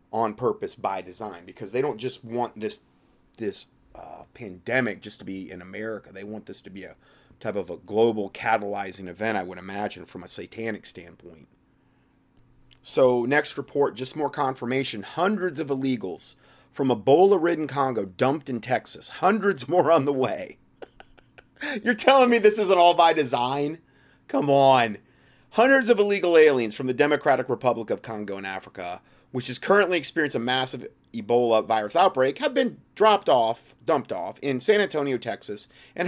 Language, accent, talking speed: English, American, 165 wpm